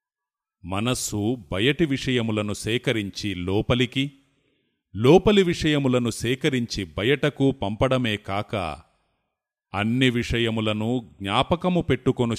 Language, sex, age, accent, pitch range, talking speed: Telugu, male, 30-49, native, 110-150 Hz, 75 wpm